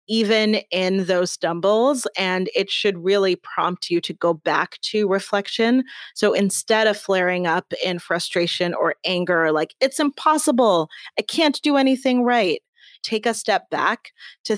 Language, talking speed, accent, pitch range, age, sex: English, 150 wpm, American, 175-215 Hz, 30-49, female